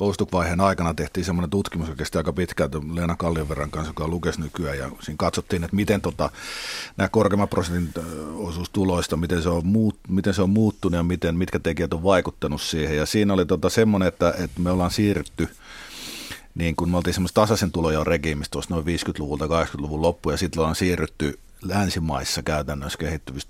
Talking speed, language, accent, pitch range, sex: 160 wpm, Finnish, native, 75-95 Hz, male